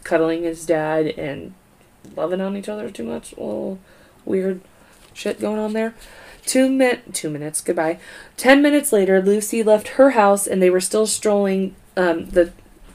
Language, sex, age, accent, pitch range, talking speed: English, female, 20-39, American, 180-210 Hz, 165 wpm